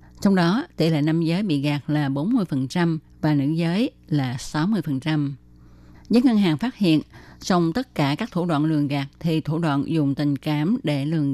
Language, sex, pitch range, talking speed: Vietnamese, female, 145-175 Hz, 190 wpm